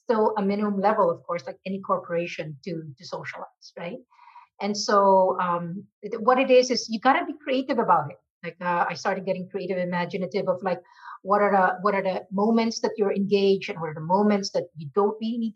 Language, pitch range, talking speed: English, 185-240 Hz, 225 wpm